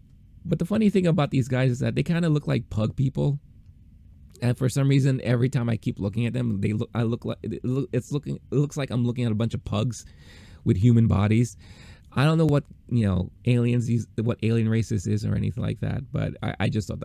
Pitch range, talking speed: 105-130 Hz, 225 wpm